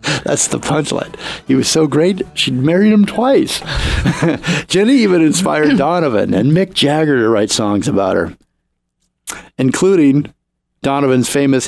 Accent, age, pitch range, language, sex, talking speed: American, 50-69, 105-145 Hz, English, male, 135 wpm